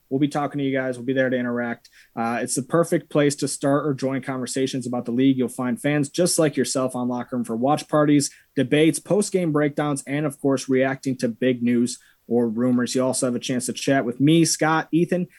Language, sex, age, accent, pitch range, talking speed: English, male, 20-39, American, 130-160 Hz, 230 wpm